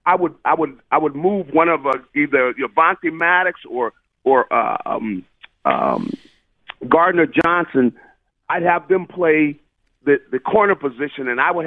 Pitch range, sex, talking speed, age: 150-210 Hz, male, 170 wpm, 40-59